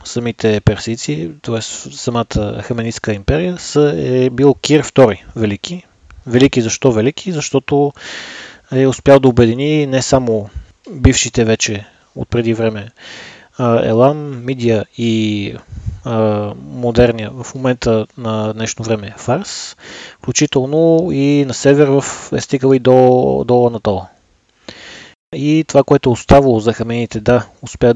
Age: 30-49